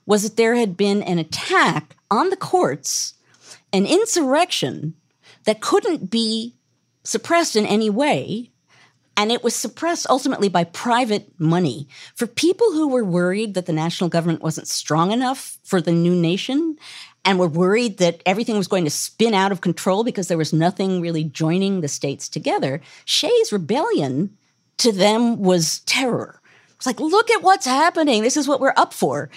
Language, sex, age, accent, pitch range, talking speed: English, female, 50-69, American, 165-235 Hz, 165 wpm